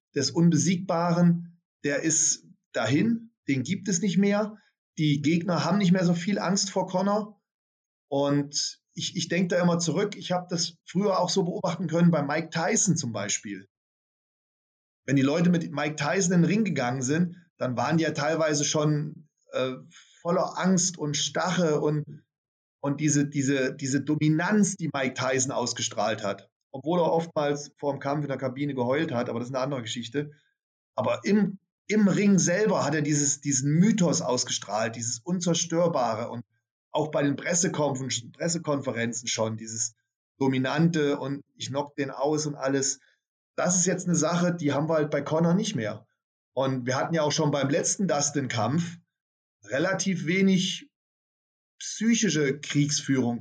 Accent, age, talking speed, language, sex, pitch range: German, 30-49, 165 wpm, German, male, 135-180 Hz